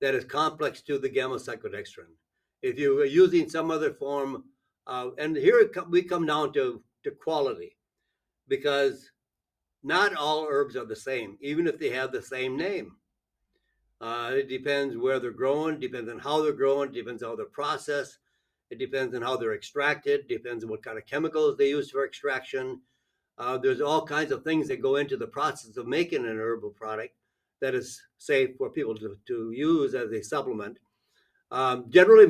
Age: 60-79